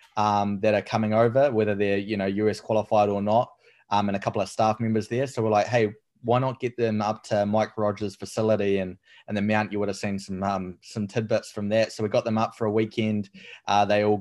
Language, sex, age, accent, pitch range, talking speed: English, male, 20-39, Australian, 105-115 Hz, 250 wpm